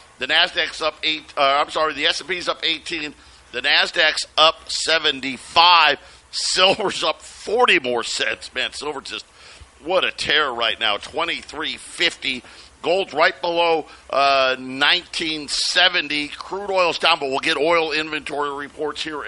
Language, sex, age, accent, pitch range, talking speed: English, male, 50-69, American, 140-190 Hz, 135 wpm